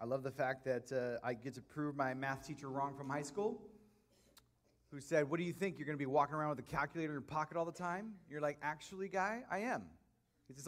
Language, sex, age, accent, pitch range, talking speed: English, male, 30-49, American, 140-180 Hz, 260 wpm